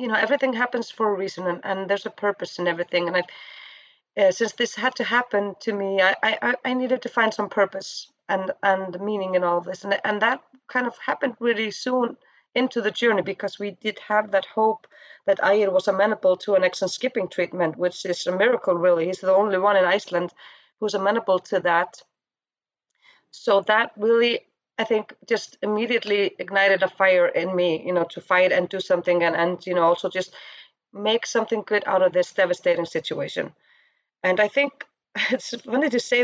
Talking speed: 200 wpm